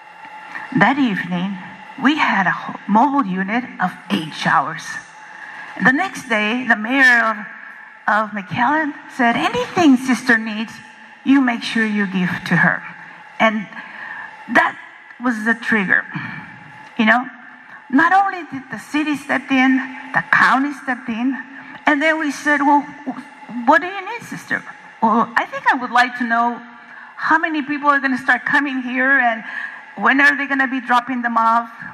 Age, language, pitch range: 50-69, English, 230-295 Hz